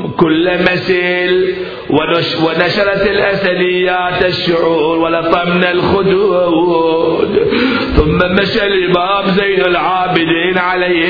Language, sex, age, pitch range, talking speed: Arabic, male, 50-69, 165-185 Hz, 75 wpm